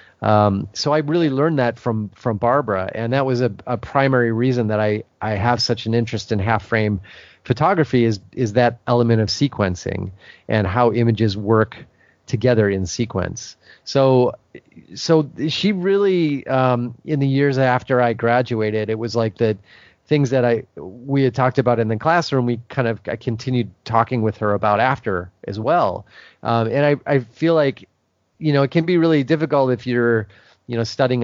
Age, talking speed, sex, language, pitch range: 30-49, 185 wpm, male, English, 110-135 Hz